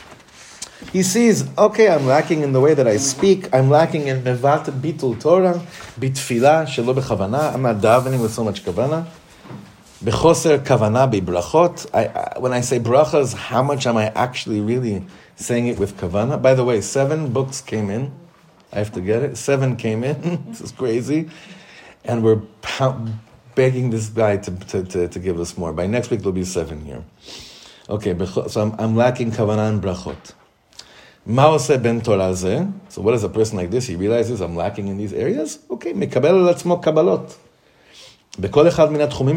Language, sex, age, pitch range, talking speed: English, male, 30-49, 105-150 Hz, 155 wpm